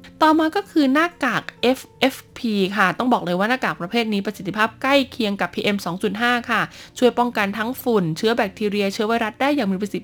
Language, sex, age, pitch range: Thai, female, 20-39, 195-250 Hz